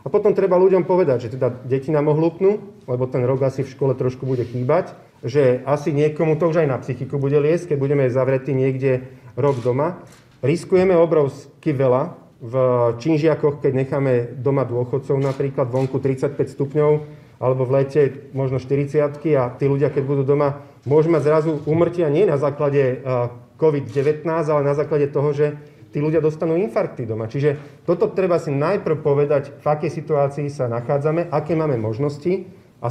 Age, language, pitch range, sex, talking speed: 40-59, Slovak, 135-155 Hz, male, 165 wpm